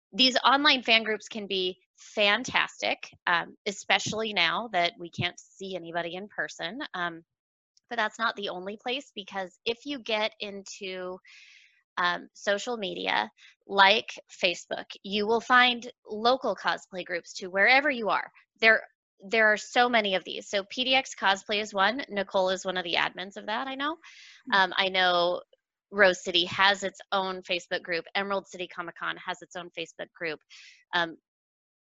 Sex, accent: female, American